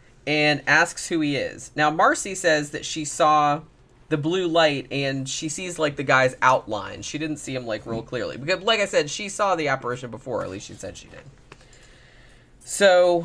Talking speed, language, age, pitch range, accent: 200 wpm, English, 30-49, 120-155 Hz, American